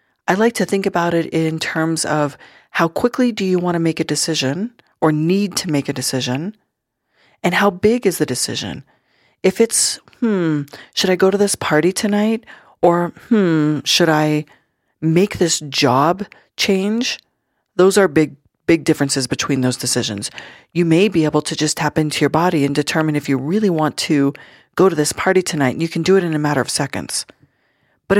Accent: American